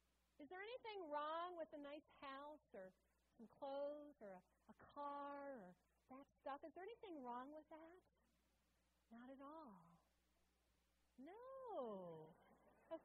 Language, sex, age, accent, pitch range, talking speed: English, female, 40-59, American, 235-355 Hz, 135 wpm